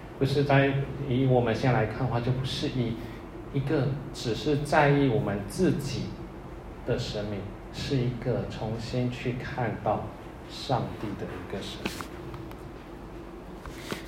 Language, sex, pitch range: Chinese, male, 110-140 Hz